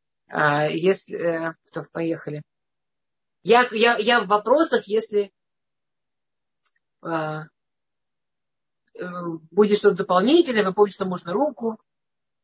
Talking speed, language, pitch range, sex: 80 wpm, Russian, 170-205 Hz, female